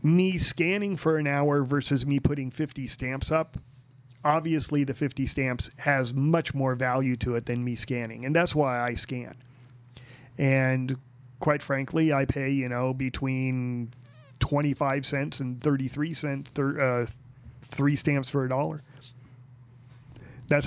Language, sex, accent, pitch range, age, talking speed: English, male, American, 125-145 Hz, 30-49, 150 wpm